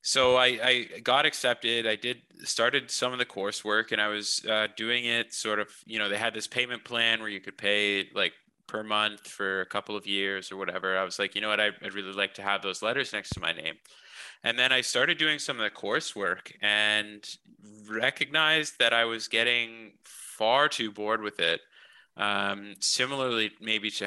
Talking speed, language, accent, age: 205 wpm, English, American, 20-39